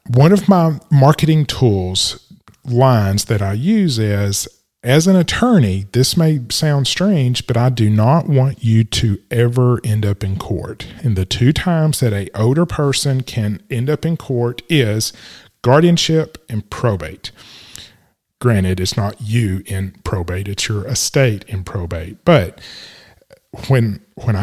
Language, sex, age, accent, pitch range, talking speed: English, male, 40-59, American, 110-145 Hz, 145 wpm